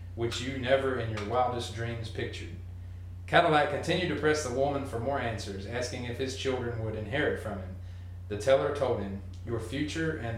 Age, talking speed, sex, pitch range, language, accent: 30-49, 185 wpm, male, 90-125 Hz, English, American